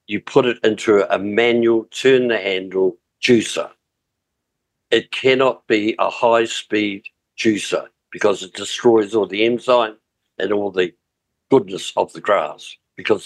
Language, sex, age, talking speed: English, male, 60-79, 125 wpm